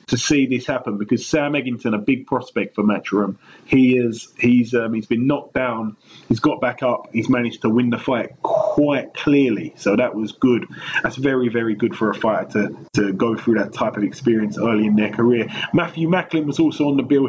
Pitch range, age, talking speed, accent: 110-135 Hz, 20-39, 210 wpm, British